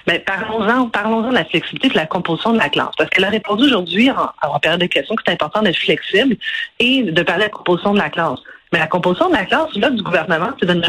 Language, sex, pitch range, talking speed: French, female, 180-265 Hz, 270 wpm